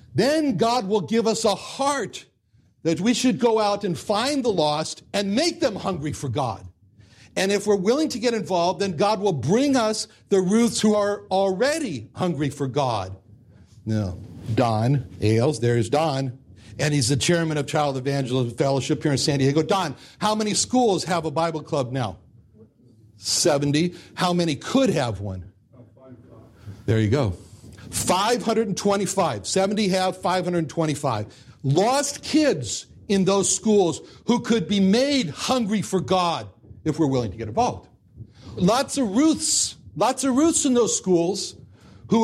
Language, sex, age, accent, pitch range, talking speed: English, male, 60-79, American, 130-215 Hz, 155 wpm